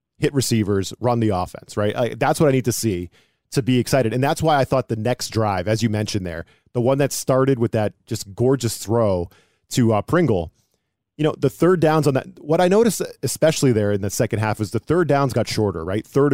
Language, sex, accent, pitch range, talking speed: English, male, American, 110-145 Hz, 230 wpm